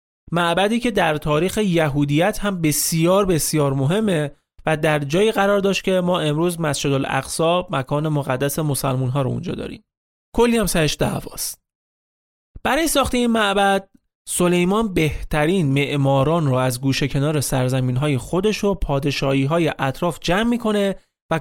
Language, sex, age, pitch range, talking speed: Persian, male, 30-49, 135-190 Hz, 135 wpm